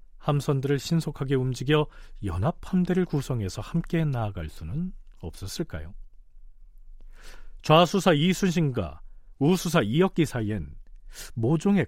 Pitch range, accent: 110-155 Hz, native